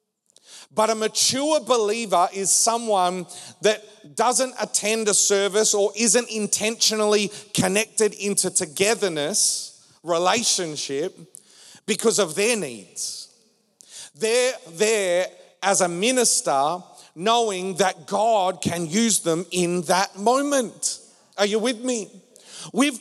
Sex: male